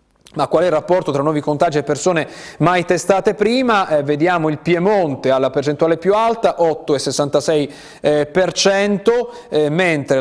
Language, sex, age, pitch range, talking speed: Italian, male, 30-49, 135-165 Hz, 140 wpm